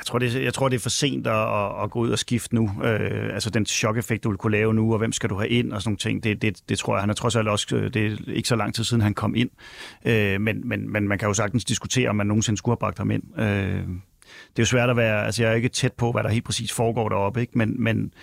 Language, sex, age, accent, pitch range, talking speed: Danish, male, 30-49, native, 105-120 Hz, 275 wpm